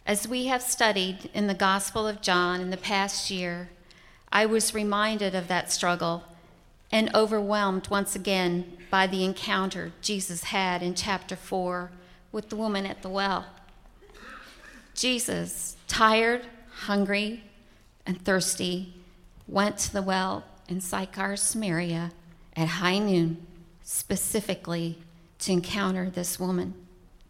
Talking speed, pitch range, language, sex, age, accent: 125 wpm, 175-210 Hz, English, female, 50-69, American